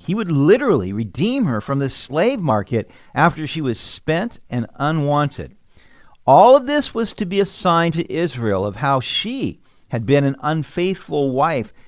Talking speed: 165 wpm